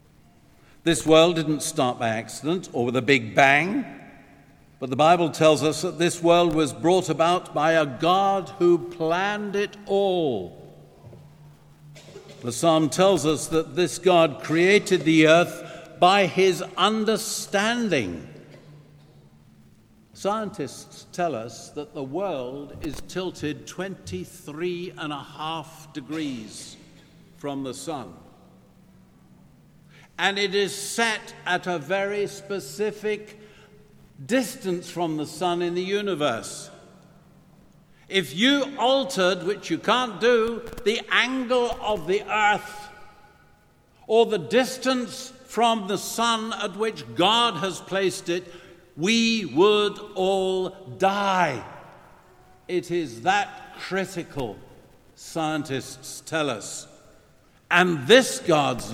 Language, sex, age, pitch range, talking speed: English, male, 60-79, 155-205 Hz, 115 wpm